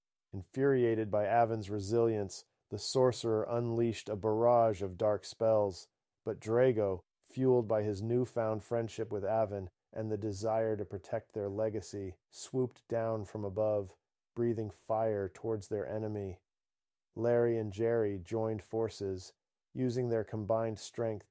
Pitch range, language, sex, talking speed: 105-115 Hz, English, male, 130 wpm